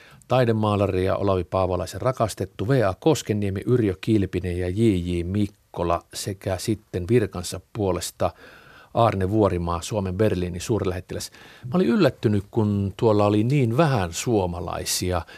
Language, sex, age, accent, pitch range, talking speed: Finnish, male, 50-69, native, 95-120 Hz, 115 wpm